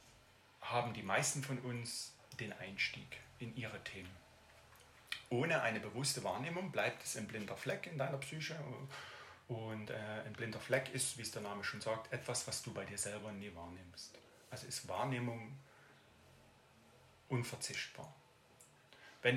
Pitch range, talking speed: 105-130 Hz, 145 wpm